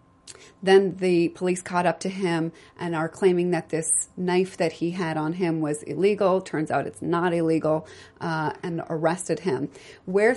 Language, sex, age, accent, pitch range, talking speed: English, female, 30-49, American, 170-205 Hz, 175 wpm